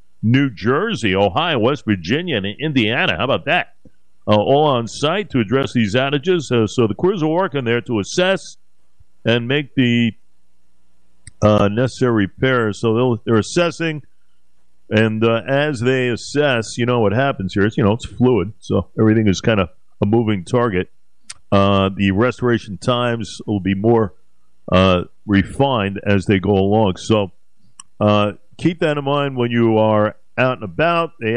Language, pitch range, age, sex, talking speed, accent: English, 100-125 Hz, 50-69, male, 165 wpm, American